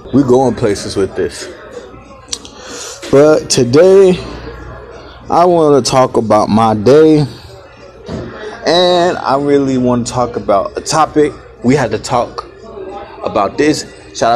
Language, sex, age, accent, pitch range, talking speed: English, male, 20-39, American, 125-155 Hz, 125 wpm